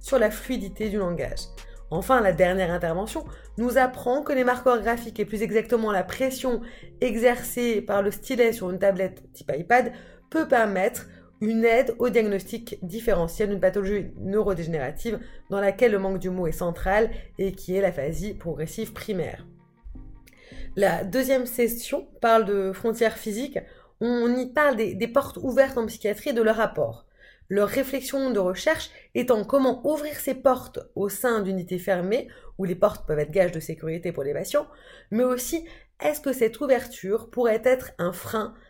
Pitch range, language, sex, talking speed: 195-250 Hz, French, female, 165 wpm